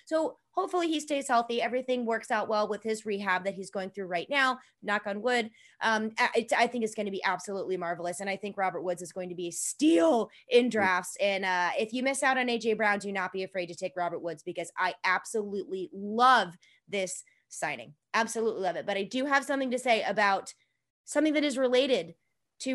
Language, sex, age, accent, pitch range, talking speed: English, female, 20-39, American, 195-270 Hz, 220 wpm